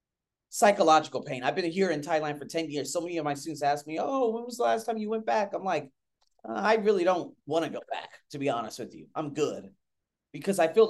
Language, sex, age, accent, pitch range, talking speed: English, male, 30-49, American, 155-215 Hz, 255 wpm